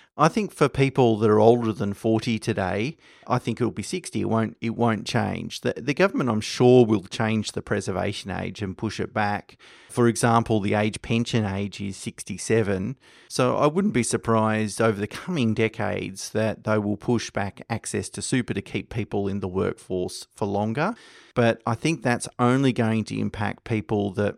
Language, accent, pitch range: English, Australian, 105-120 Hz